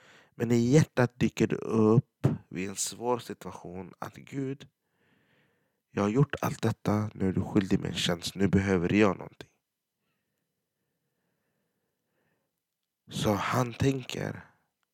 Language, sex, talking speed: Swedish, male, 125 wpm